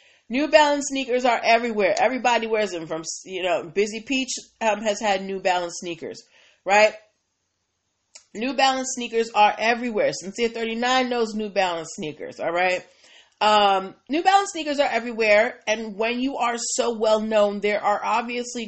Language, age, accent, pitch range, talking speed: English, 30-49, American, 190-235 Hz, 155 wpm